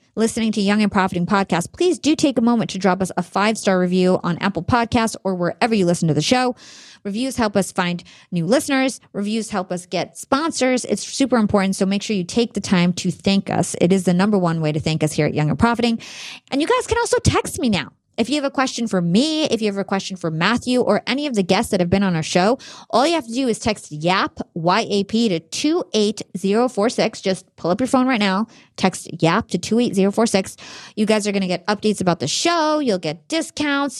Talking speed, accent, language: 235 wpm, American, English